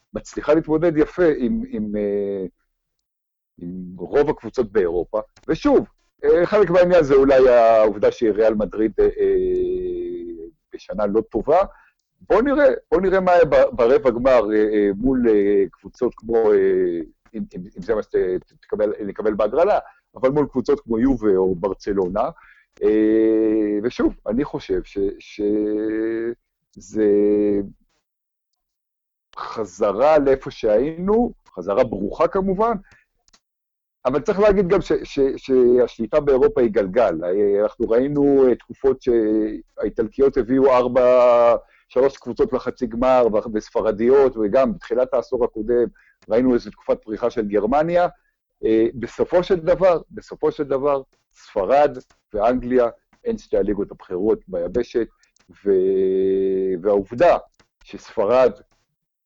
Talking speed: 105 wpm